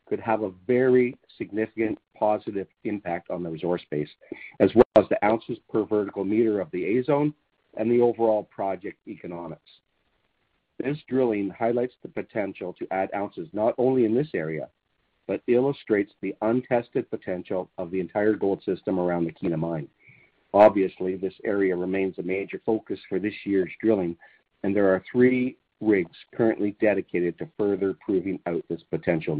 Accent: American